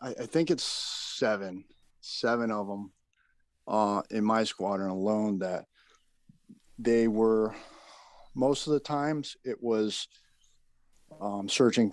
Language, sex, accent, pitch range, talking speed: English, male, American, 100-125 Hz, 115 wpm